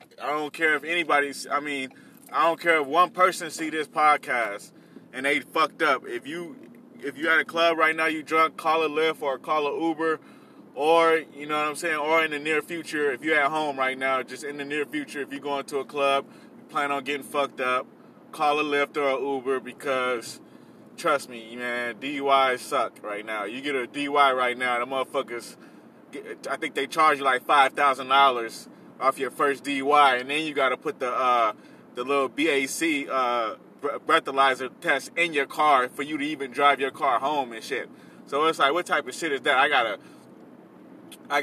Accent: American